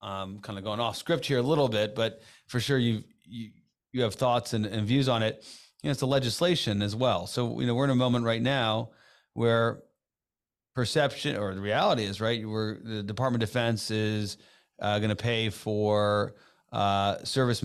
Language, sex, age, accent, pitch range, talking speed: English, male, 40-59, American, 100-115 Hz, 205 wpm